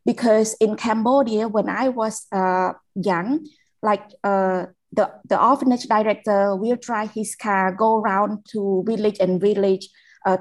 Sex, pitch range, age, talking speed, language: female, 185-220 Hz, 20-39, 145 wpm, English